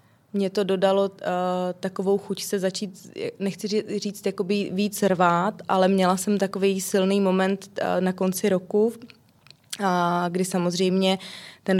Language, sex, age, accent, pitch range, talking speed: Czech, female, 20-39, native, 185-195 Hz, 130 wpm